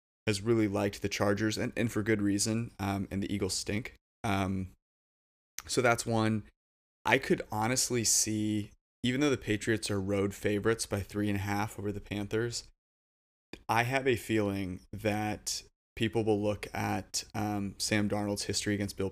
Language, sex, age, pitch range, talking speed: English, male, 20-39, 100-110 Hz, 165 wpm